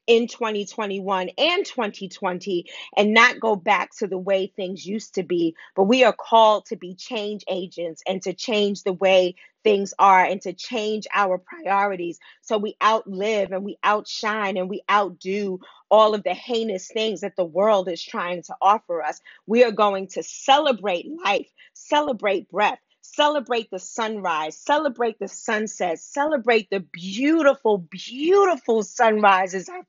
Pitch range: 190-235 Hz